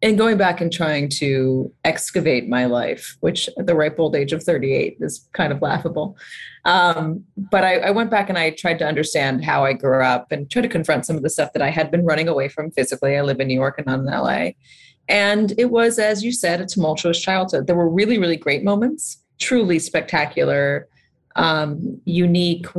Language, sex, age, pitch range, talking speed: English, female, 30-49, 145-180 Hz, 210 wpm